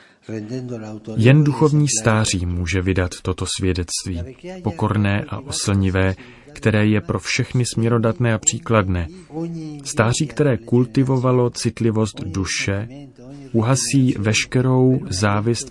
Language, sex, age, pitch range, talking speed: Czech, male, 30-49, 100-125 Hz, 95 wpm